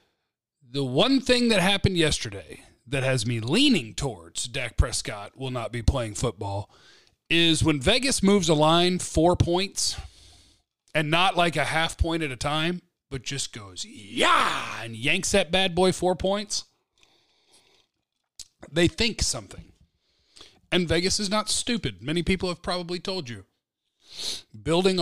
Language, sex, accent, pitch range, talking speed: English, male, American, 120-170 Hz, 145 wpm